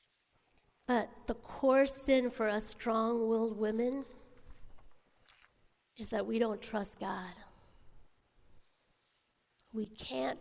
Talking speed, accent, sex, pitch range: 90 wpm, American, female, 215-270 Hz